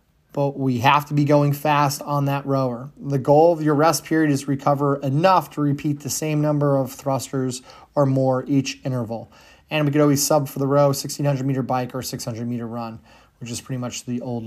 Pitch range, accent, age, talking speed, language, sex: 130-150 Hz, American, 30-49, 210 wpm, English, male